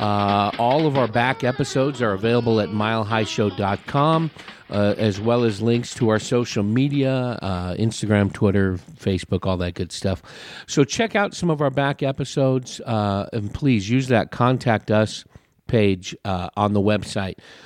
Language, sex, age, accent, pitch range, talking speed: English, male, 50-69, American, 100-125 Hz, 165 wpm